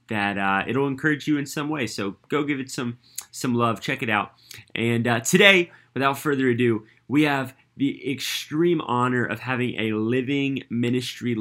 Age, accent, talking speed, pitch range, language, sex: 30-49, American, 180 wpm, 110-135 Hz, English, male